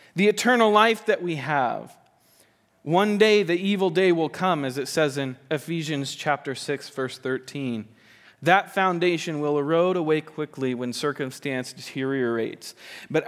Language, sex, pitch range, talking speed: English, male, 125-175 Hz, 145 wpm